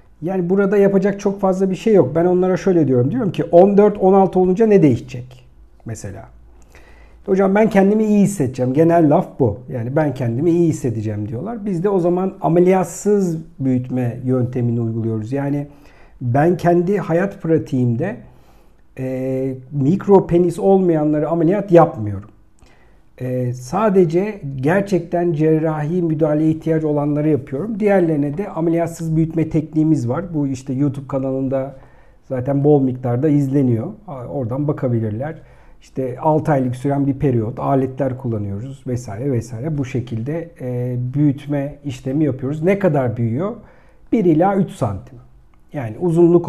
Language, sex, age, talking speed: Turkish, male, 50-69, 130 wpm